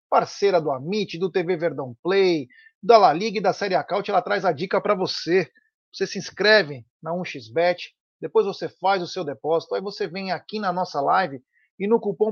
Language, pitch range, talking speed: Portuguese, 165-215 Hz, 200 wpm